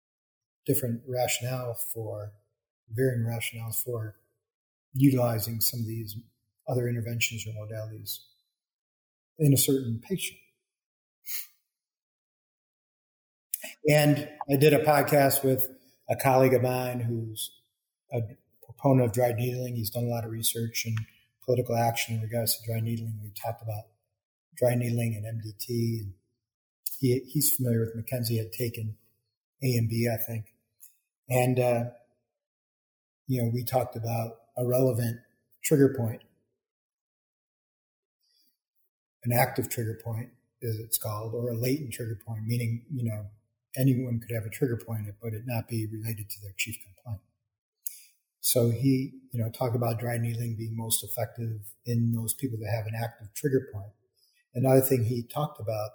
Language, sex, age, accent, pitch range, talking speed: English, male, 40-59, American, 115-130 Hz, 145 wpm